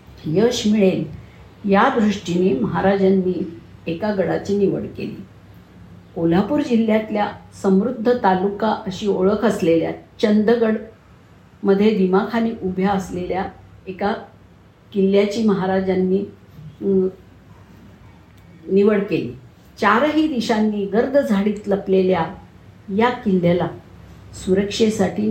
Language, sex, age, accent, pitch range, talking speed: Marathi, female, 50-69, native, 185-225 Hz, 80 wpm